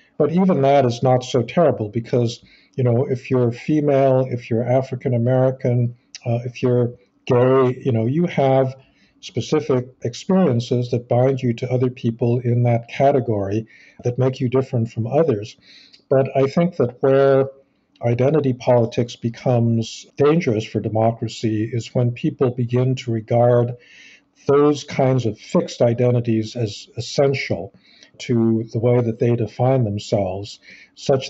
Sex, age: male, 50-69